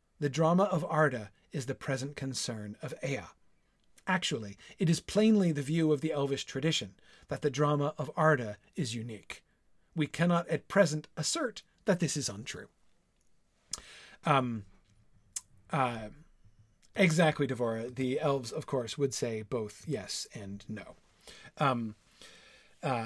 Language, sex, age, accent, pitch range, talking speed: English, male, 40-59, American, 135-185 Hz, 135 wpm